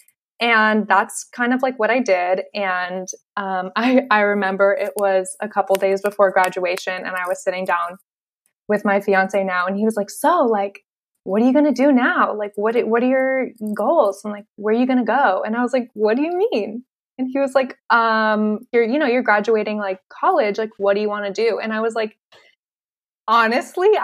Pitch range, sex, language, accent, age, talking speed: 200-245 Hz, female, English, American, 20-39, 225 wpm